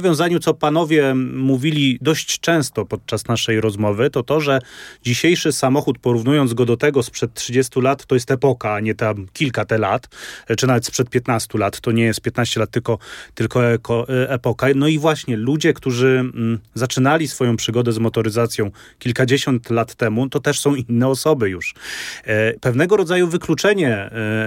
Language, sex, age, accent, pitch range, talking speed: Polish, male, 30-49, native, 115-150 Hz, 160 wpm